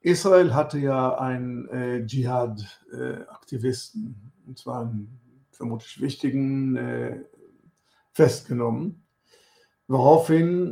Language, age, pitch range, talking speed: German, 60-79, 125-150 Hz, 85 wpm